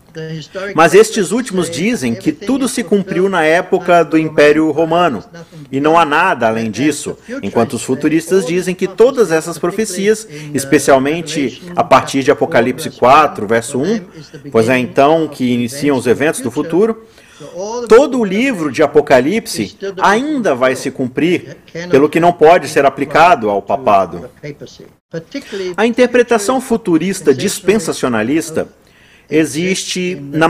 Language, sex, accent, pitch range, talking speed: Portuguese, male, Brazilian, 145-200 Hz, 130 wpm